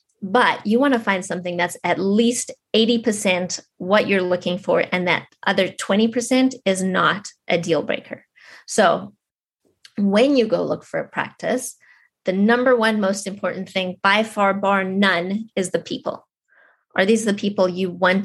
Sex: female